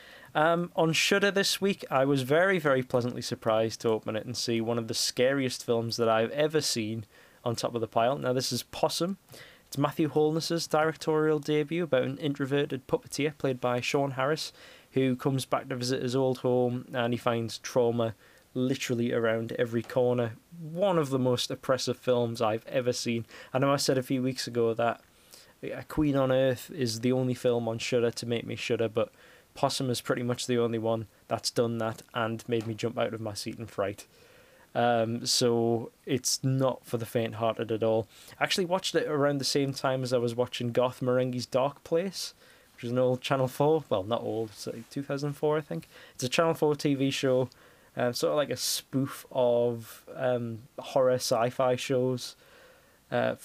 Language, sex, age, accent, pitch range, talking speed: English, male, 20-39, British, 120-140 Hz, 195 wpm